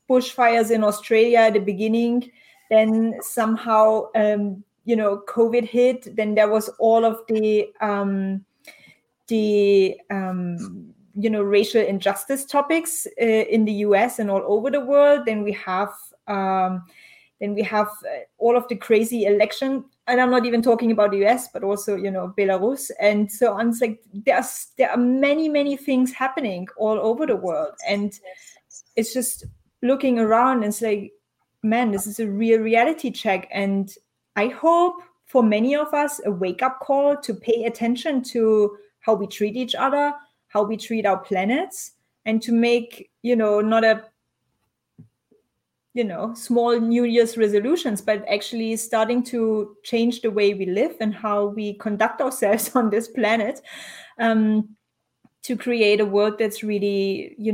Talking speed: 160 wpm